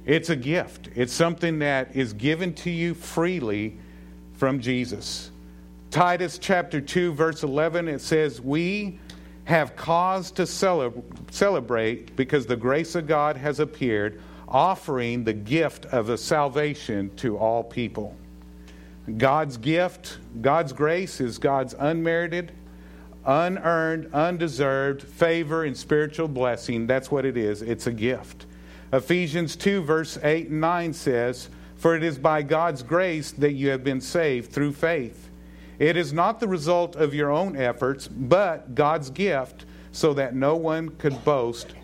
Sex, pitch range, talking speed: male, 115-165 Hz, 140 wpm